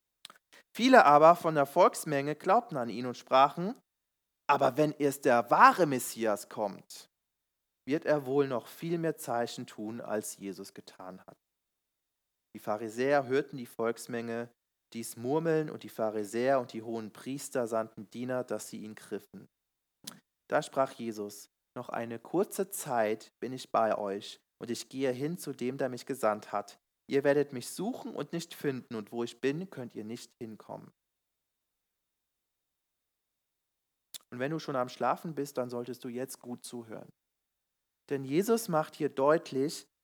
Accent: German